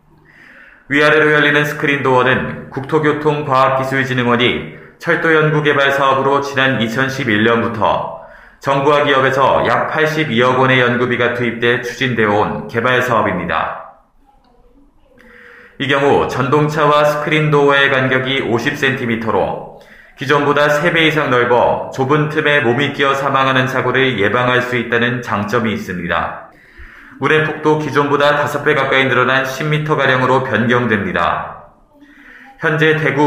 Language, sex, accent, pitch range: Korean, male, native, 125-150 Hz